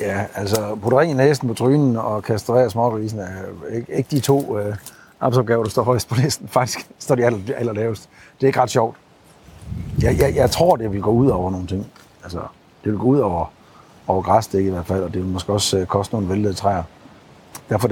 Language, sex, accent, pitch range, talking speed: Danish, male, native, 105-130 Hz, 220 wpm